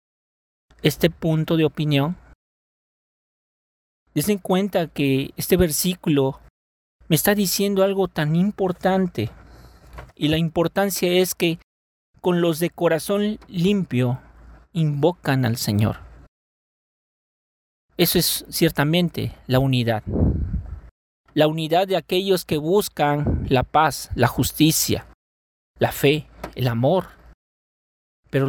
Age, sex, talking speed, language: 40-59, male, 105 wpm, Spanish